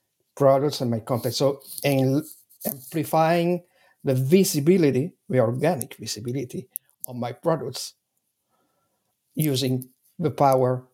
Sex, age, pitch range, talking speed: male, 60-79, 125-145 Hz, 95 wpm